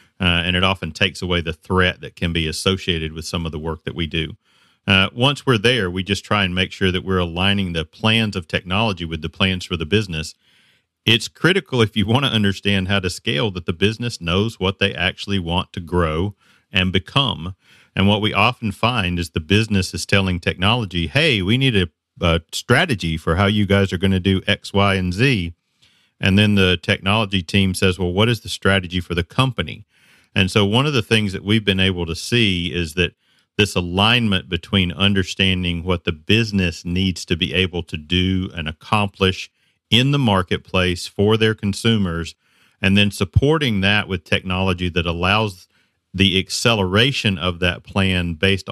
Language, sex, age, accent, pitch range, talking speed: English, male, 40-59, American, 90-105 Hz, 195 wpm